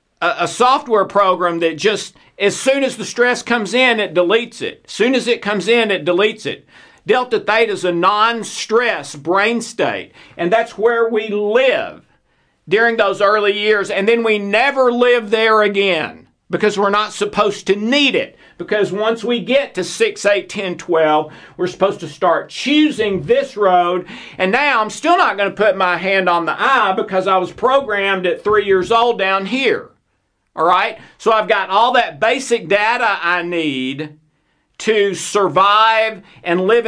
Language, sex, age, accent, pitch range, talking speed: English, male, 50-69, American, 175-230 Hz, 175 wpm